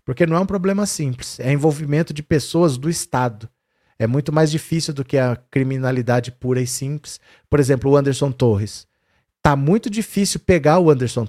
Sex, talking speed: male, 180 wpm